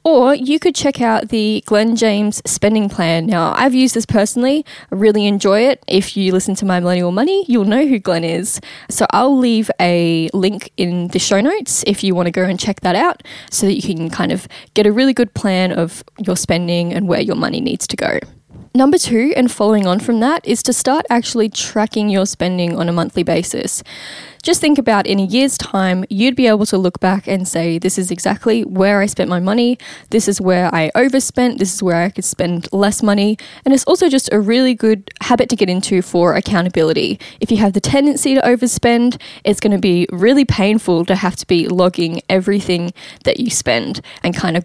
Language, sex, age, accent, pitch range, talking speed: English, female, 10-29, Australian, 180-240 Hz, 220 wpm